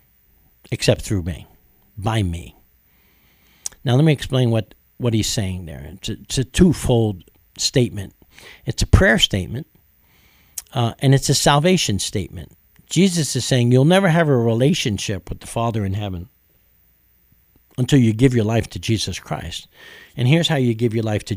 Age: 60-79